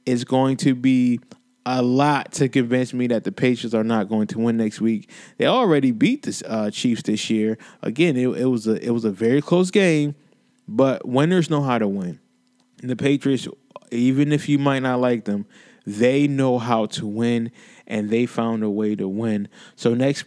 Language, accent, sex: English, American, male